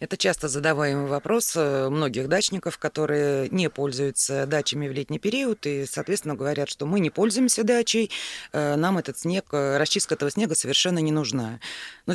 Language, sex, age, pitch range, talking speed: Russian, female, 30-49, 145-190 Hz, 155 wpm